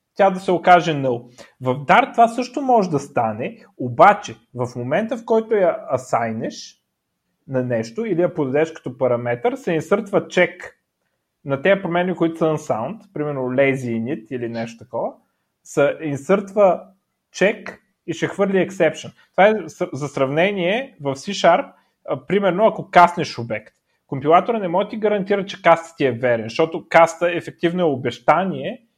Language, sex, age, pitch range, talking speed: Bulgarian, male, 30-49, 140-190 Hz, 150 wpm